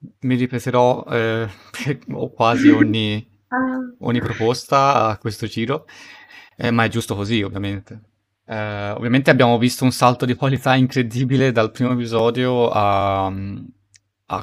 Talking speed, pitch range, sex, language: 130 wpm, 105-125 Hz, male, Italian